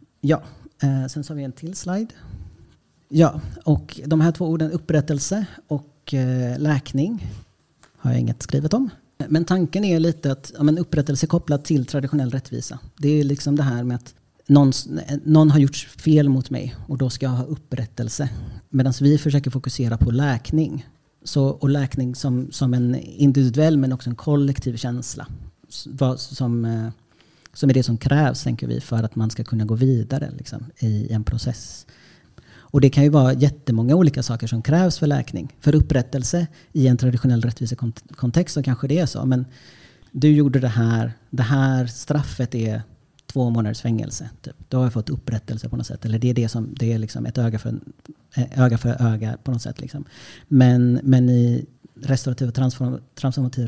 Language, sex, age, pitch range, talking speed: Swedish, male, 40-59, 120-145 Hz, 180 wpm